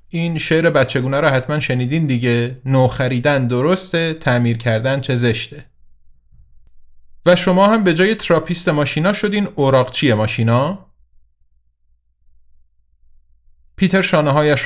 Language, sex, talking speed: Persian, male, 110 wpm